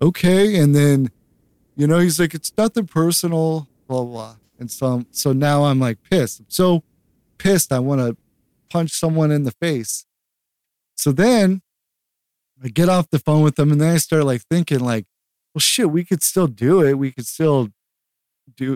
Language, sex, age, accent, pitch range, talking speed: English, male, 20-39, American, 115-150 Hz, 185 wpm